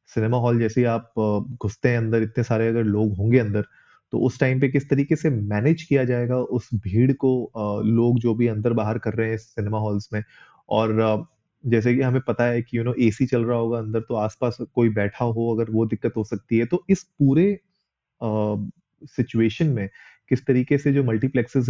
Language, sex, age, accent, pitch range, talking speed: Hindi, male, 30-49, native, 110-125 Hz, 205 wpm